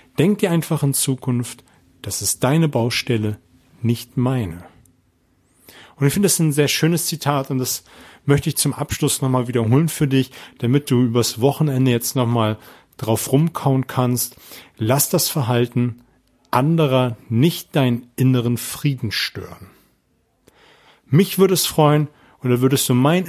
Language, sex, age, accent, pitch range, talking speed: German, male, 40-59, German, 115-145 Hz, 145 wpm